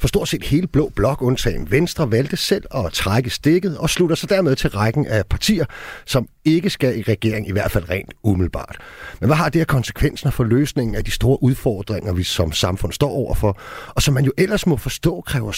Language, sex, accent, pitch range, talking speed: Danish, male, native, 105-145 Hz, 210 wpm